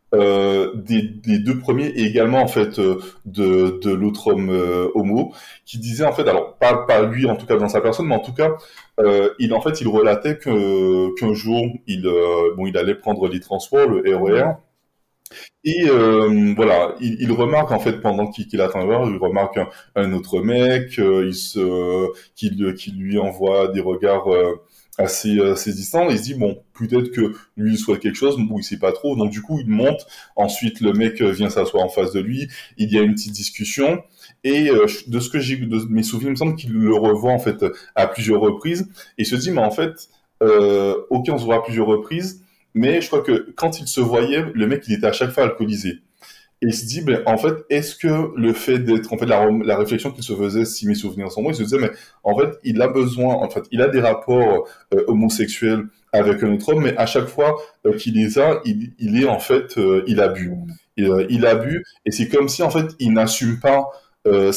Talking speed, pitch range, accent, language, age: 230 wpm, 105-140 Hz, French, French, 20-39